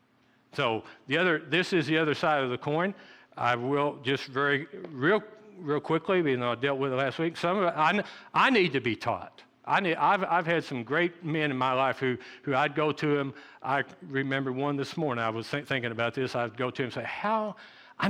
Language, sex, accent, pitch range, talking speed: English, male, American, 120-155 Hz, 235 wpm